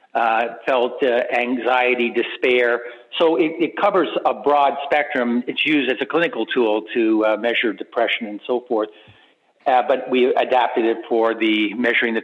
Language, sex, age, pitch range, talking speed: English, male, 50-69, 115-135 Hz, 165 wpm